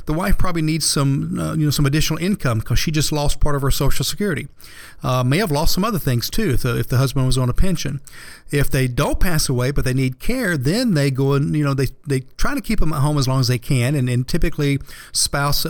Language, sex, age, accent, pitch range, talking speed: English, male, 40-59, American, 130-155 Hz, 265 wpm